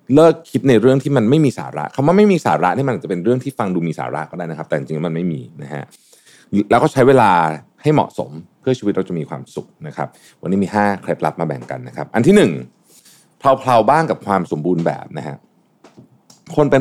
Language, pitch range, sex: Thai, 85-130 Hz, male